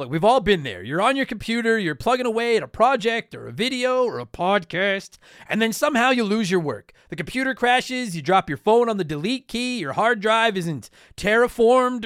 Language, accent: English, American